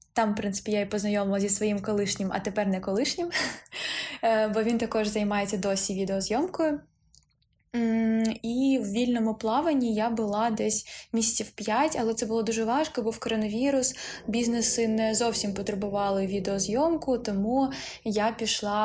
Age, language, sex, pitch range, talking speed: 20-39, Ukrainian, female, 205-235 Hz, 140 wpm